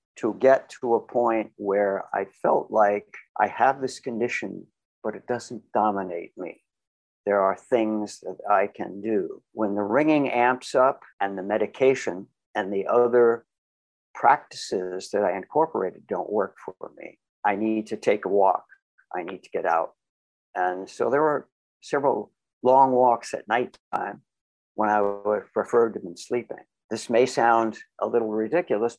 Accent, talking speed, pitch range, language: American, 165 wpm, 100-130 Hz, English